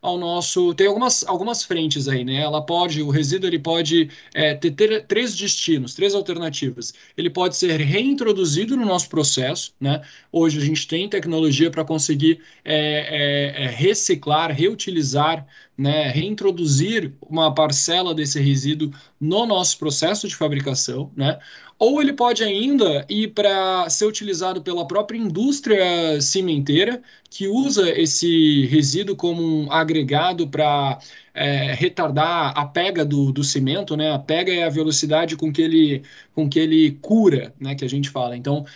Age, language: 20-39, Portuguese